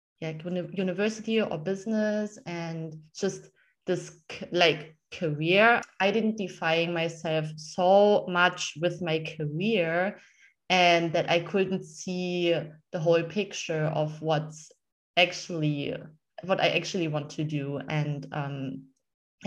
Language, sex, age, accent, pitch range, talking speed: English, female, 20-39, German, 160-205 Hz, 110 wpm